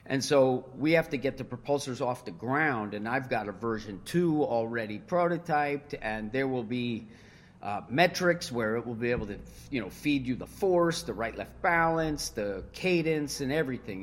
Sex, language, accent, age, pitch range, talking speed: male, English, American, 40-59, 115-150 Hz, 190 wpm